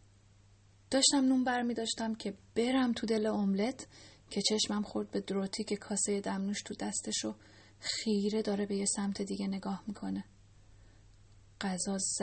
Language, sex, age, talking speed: Persian, female, 10-29, 135 wpm